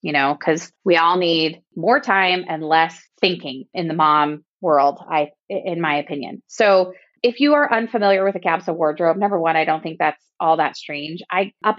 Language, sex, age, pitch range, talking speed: English, female, 20-39, 160-195 Hz, 200 wpm